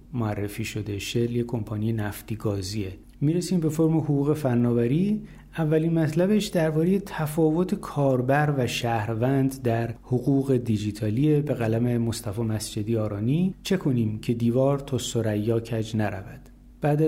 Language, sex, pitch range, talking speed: Persian, male, 115-155 Hz, 125 wpm